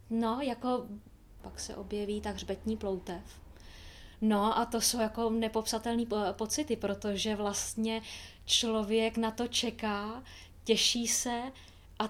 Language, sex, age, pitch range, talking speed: Czech, female, 20-39, 220-245 Hz, 120 wpm